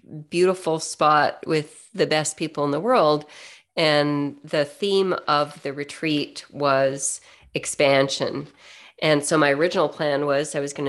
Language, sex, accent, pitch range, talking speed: English, female, American, 140-170 Hz, 145 wpm